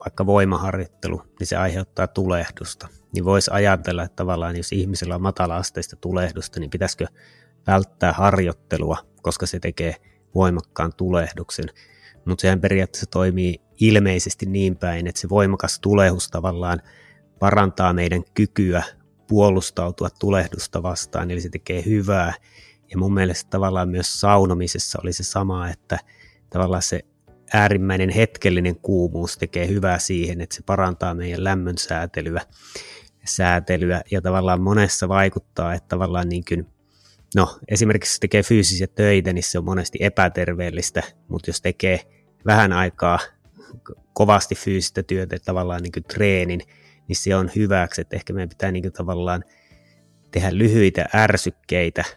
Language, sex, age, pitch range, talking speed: Finnish, male, 30-49, 90-95 Hz, 130 wpm